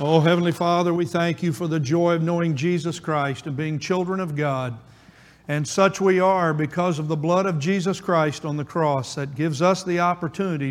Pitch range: 145-175 Hz